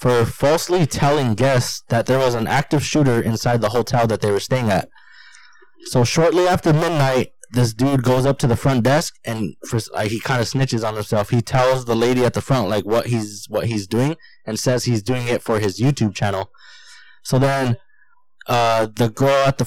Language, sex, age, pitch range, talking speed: English, male, 20-39, 115-135 Hz, 205 wpm